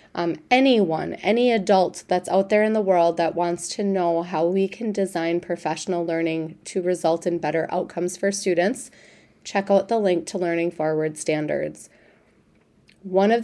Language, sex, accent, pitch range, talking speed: English, female, American, 170-205 Hz, 165 wpm